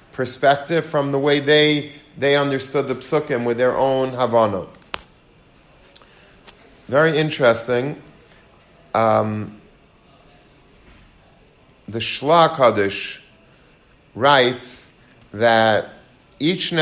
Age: 40-59